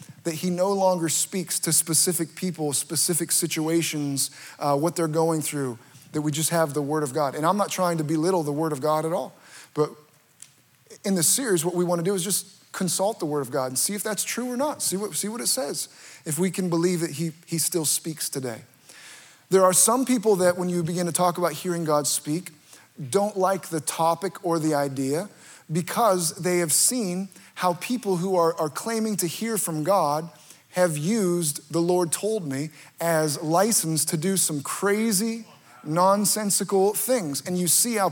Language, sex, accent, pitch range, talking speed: English, male, American, 155-195 Hz, 200 wpm